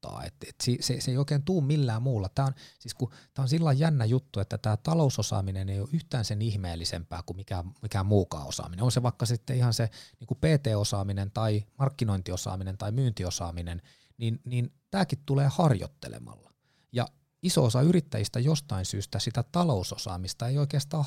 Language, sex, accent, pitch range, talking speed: Finnish, male, native, 100-135 Hz, 140 wpm